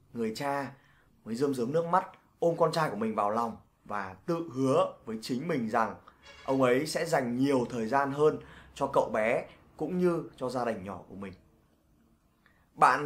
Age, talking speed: 20-39, 190 wpm